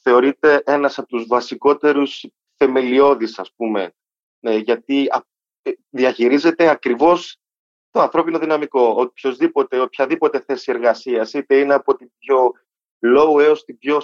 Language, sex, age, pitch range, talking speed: Greek, male, 30-49, 115-160 Hz, 110 wpm